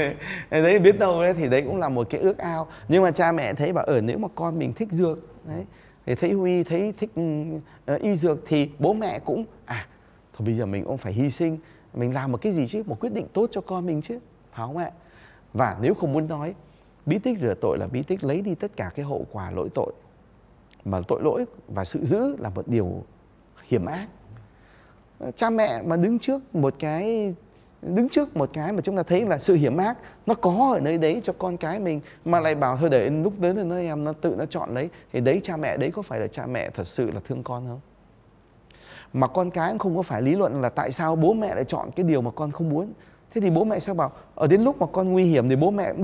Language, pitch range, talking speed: Vietnamese, 135-190 Hz, 250 wpm